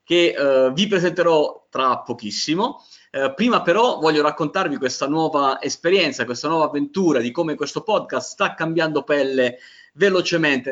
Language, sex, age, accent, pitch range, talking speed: Italian, male, 30-49, native, 135-175 Hz, 140 wpm